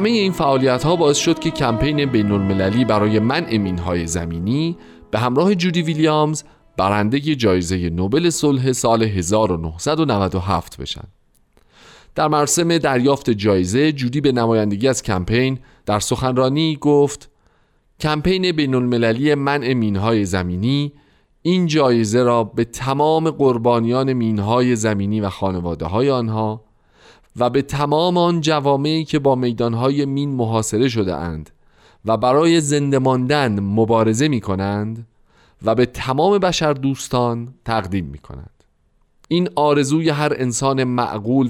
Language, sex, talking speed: Persian, male, 125 wpm